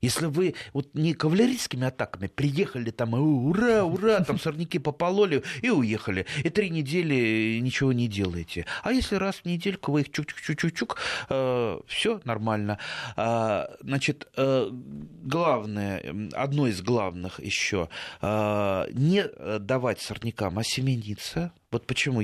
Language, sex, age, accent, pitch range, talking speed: Russian, male, 30-49, native, 115-170 Hz, 130 wpm